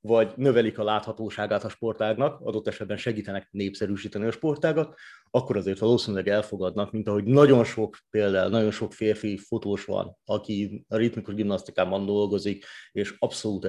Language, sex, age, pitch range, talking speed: Hungarian, male, 30-49, 110-140 Hz, 145 wpm